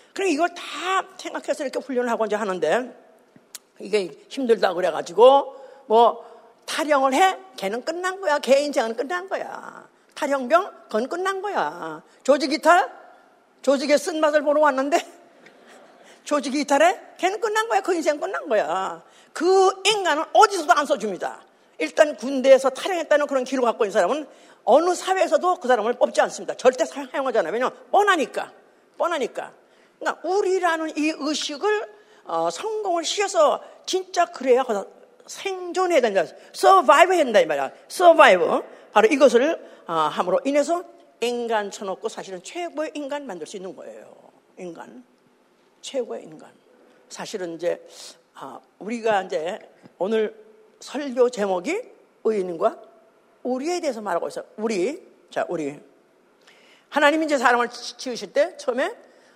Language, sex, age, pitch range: Korean, female, 50-69, 245-355 Hz